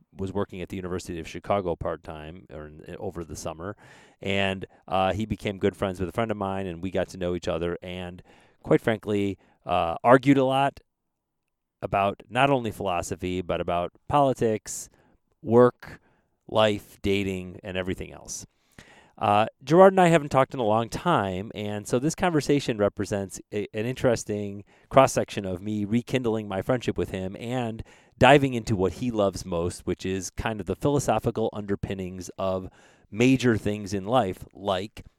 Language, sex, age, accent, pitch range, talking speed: English, male, 30-49, American, 95-115 Hz, 165 wpm